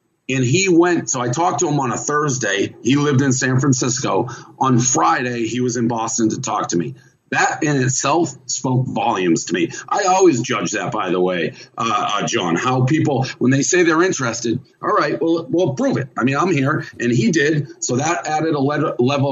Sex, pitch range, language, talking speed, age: male, 125-150 Hz, English, 210 wpm, 40-59